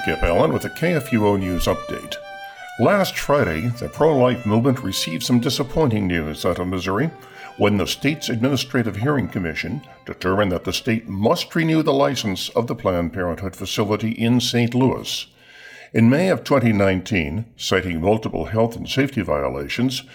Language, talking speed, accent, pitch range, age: English, 155 wpm, American, 95-130 Hz, 50-69